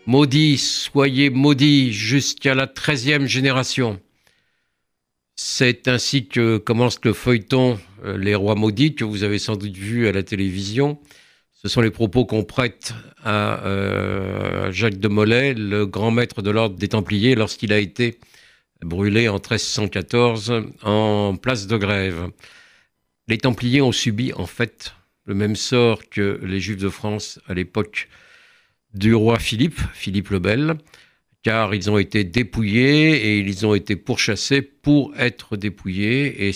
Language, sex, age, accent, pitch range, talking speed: French, male, 50-69, French, 100-130 Hz, 150 wpm